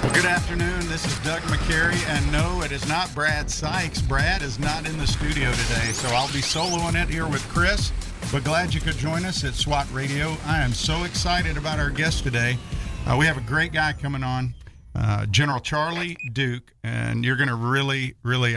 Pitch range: 120-155 Hz